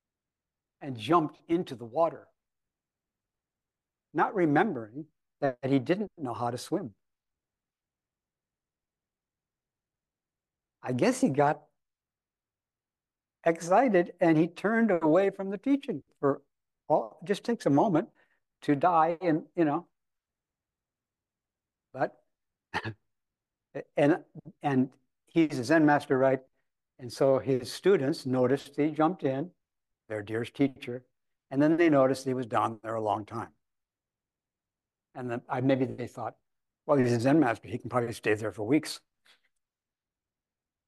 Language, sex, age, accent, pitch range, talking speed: English, male, 60-79, American, 120-155 Hz, 125 wpm